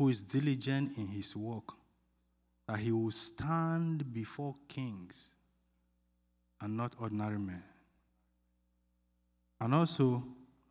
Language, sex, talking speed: English, male, 100 wpm